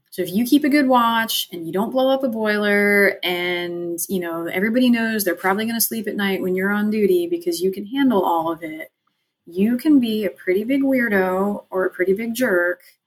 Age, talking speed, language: 30-49, 225 wpm, English